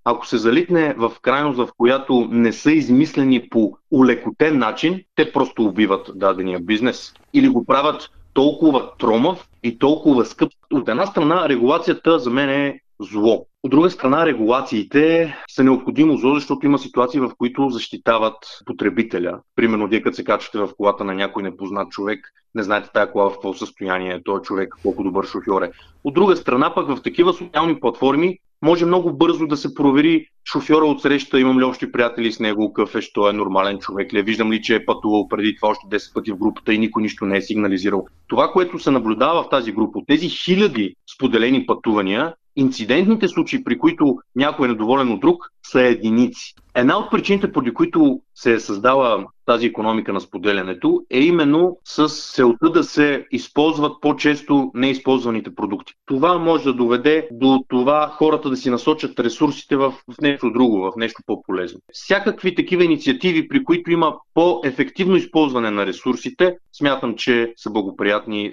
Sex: male